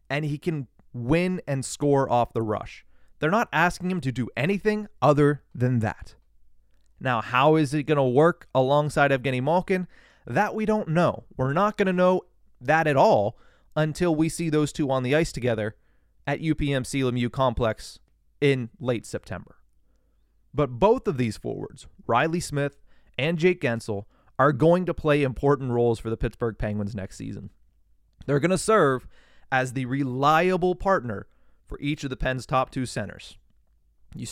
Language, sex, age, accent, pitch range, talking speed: English, male, 30-49, American, 115-150 Hz, 170 wpm